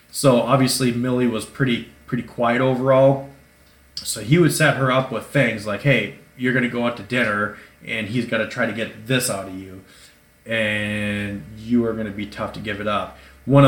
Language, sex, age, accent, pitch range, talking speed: English, male, 30-49, American, 105-135 Hz, 200 wpm